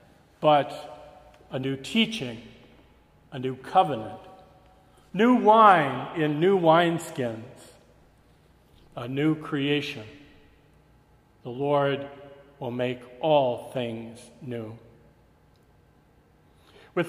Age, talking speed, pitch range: 50-69, 80 wpm, 130-175 Hz